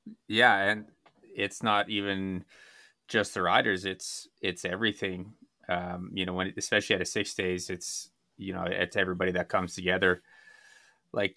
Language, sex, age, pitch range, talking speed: English, male, 20-39, 90-100 Hz, 155 wpm